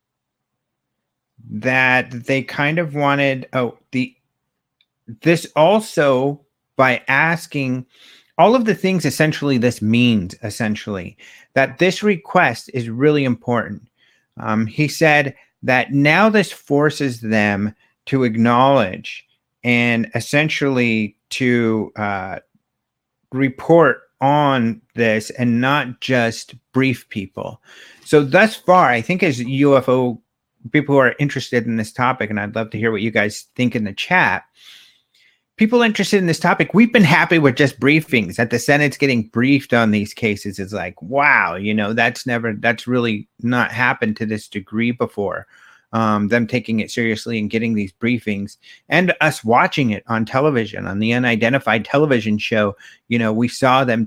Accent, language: American, English